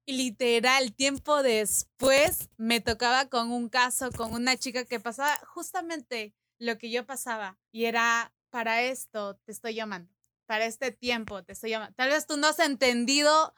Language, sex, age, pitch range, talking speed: Spanish, female, 20-39, 210-245 Hz, 165 wpm